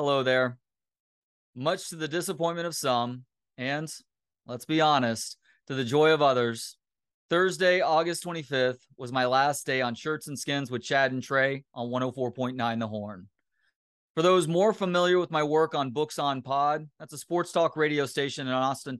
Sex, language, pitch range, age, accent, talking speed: male, English, 125-160 Hz, 30-49, American, 175 wpm